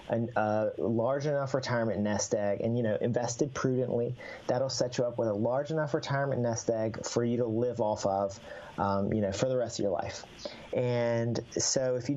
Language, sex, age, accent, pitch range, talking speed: English, male, 40-59, American, 105-135 Hz, 205 wpm